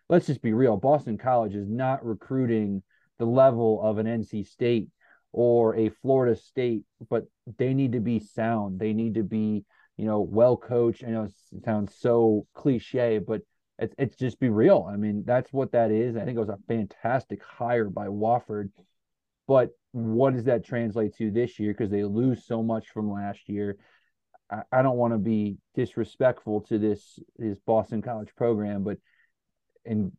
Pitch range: 105-120 Hz